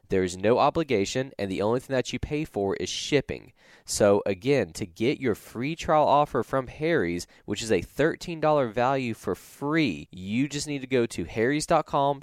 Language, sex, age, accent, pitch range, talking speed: English, male, 20-39, American, 105-135 Hz, 185 wpm